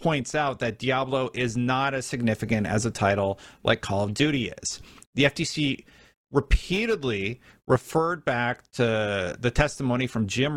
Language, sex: English, male